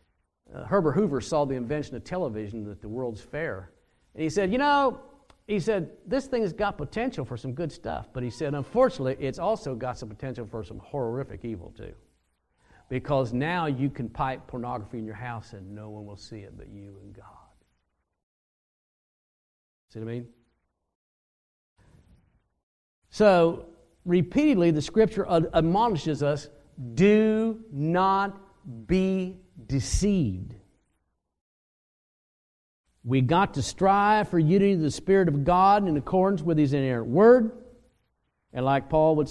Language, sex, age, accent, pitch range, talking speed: English, male, 50-69, American, 110-175 Hz, 145 wpm